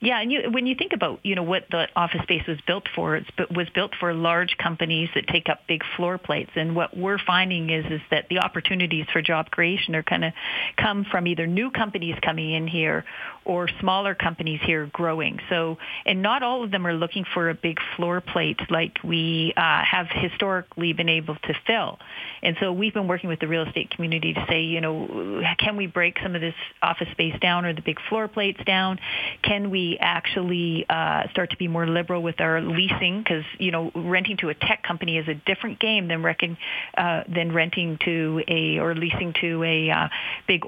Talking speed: 210 wpm